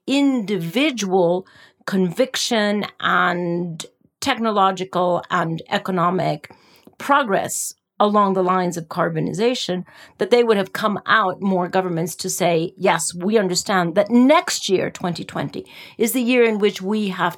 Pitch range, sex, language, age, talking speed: 170-215 Hz, female, English, 40-59, 125 wpm